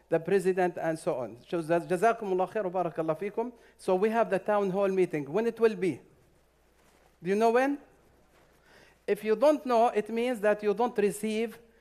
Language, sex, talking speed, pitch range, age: English, male, 150 wpm, 180-220 Hz, 50-69